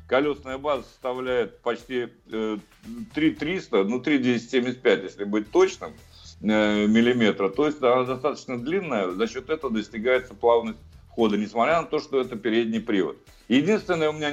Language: Russian